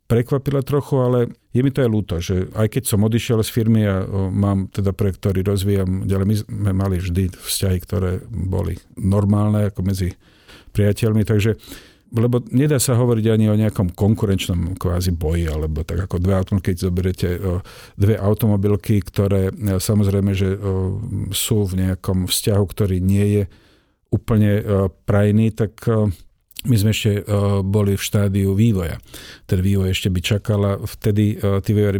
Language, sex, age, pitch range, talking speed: Slovak, male, 50-69, 95-110 Hz, 165 wpm